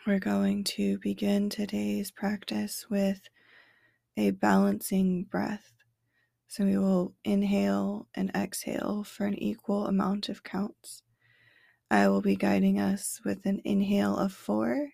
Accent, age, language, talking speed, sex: American, 20-39, English, 130 wpm, female